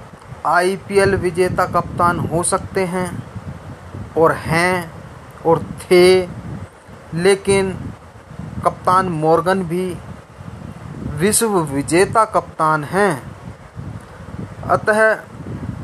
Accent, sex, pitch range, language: native, male, 150-185 Hz, Hindi